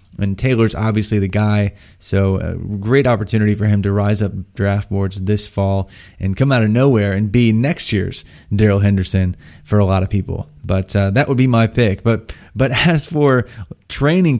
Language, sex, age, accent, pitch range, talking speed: English, male, 20-39, American, 100-120 Hz, 190 wpm